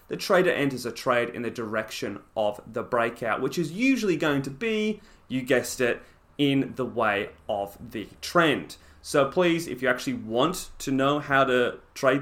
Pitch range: 115-150 Hz